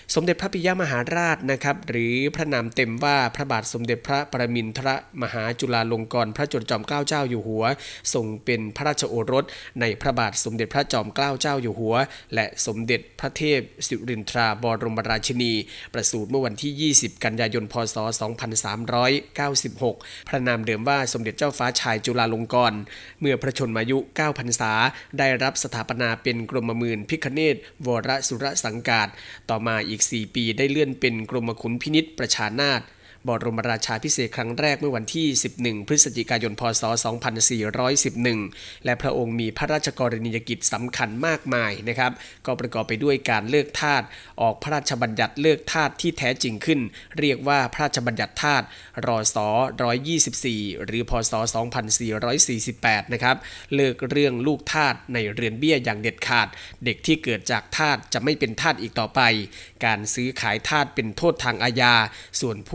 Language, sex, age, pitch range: Thai, male, 20-39, 115-140 Hz